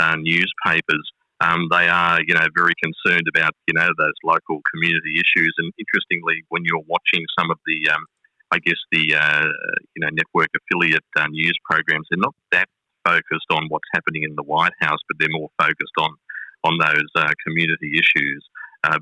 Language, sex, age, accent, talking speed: English, male, 30-49, Australian, 180 wpm